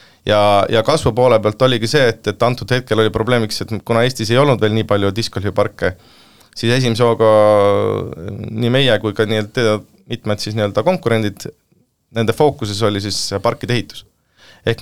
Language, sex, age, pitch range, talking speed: English, male, 30-49, 100-120 Hz, 145 wpm